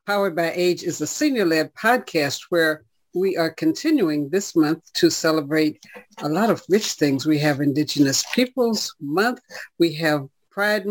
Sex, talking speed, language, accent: female, 155 wpm, English, American